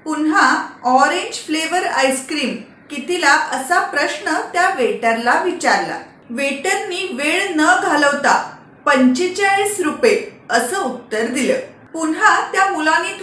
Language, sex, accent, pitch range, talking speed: Marathi, female, native, 255-350 Hz, 50 wpm